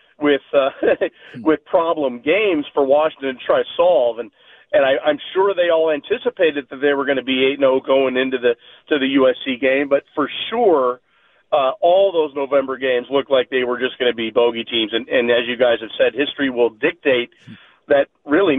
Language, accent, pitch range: English, American, 135-165 Hz